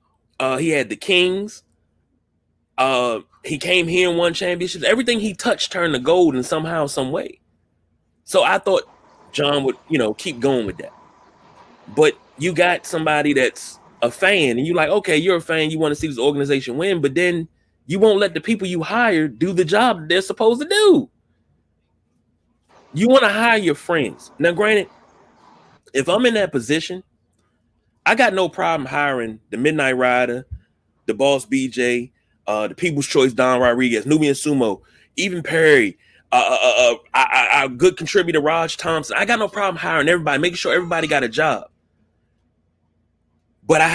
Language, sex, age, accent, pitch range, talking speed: English, male, 30-49, American, 125-180 Hz, 175 wpm